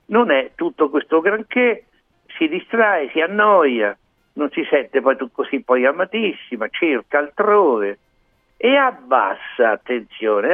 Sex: male